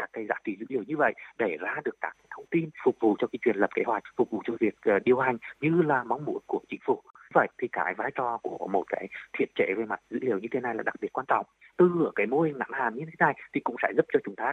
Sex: male